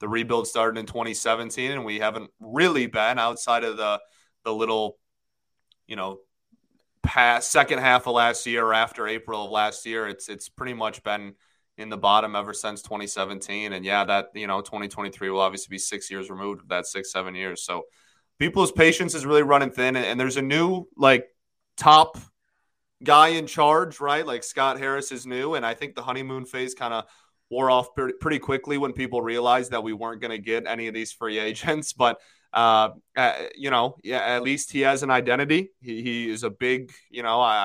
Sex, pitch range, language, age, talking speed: male, 110-130 Hz, English, 30-49, 200 wpm